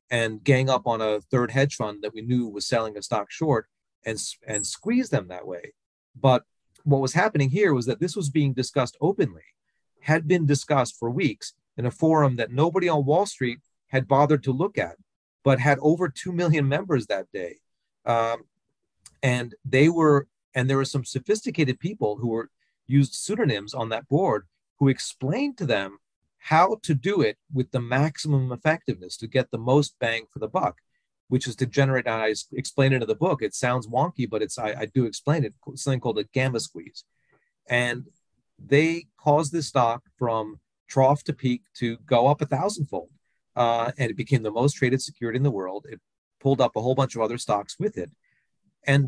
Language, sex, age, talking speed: English, male, 40-59, 195 wpm